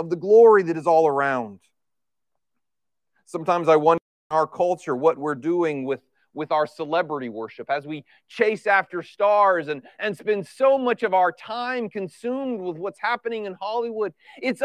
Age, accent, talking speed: 40-59, American, 170 wpm